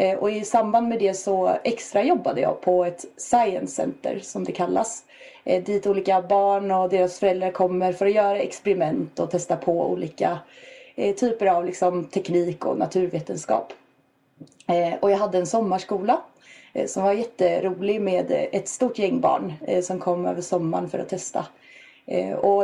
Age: 30-49